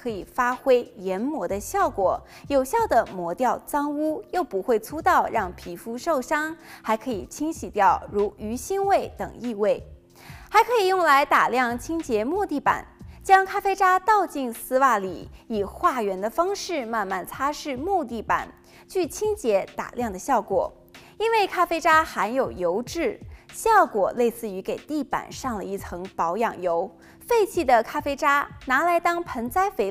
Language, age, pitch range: Chinese, 20-39, 220-345 Hz